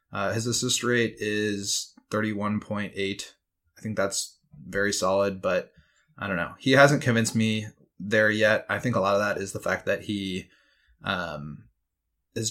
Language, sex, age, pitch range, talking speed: English, male, 20-39, 100-120 Hz, 165 wpm